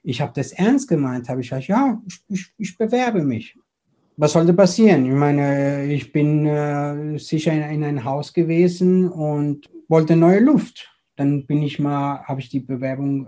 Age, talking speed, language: 60-79, 175 wpm, German